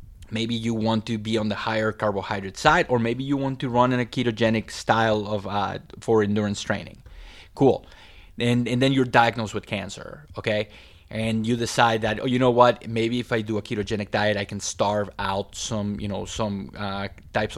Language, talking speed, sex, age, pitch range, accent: English, 200 wpm, male, 30-49, 100-120 Hz, Mexican